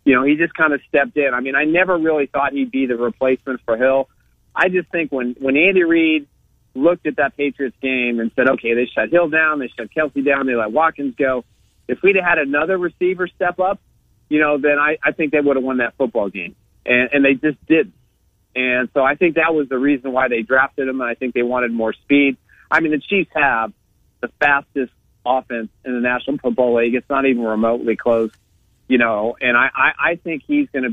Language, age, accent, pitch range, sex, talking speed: English, 40-59, American, 120-150 Hz, male, 230 wpm